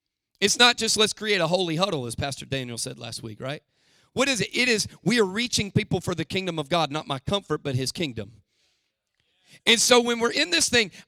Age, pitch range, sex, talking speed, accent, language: 40-59, 155-245 Hz, male, 225 wpm, American, English